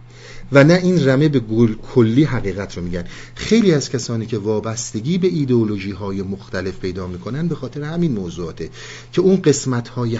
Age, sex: 50-69, male